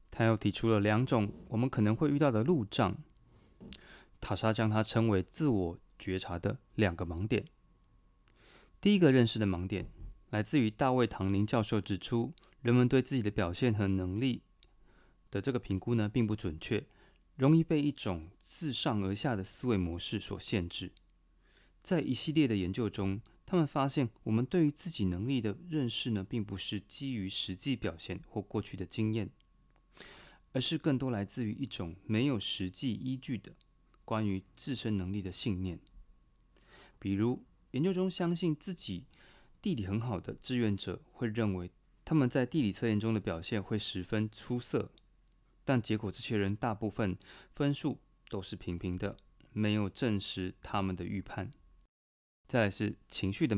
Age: 30-49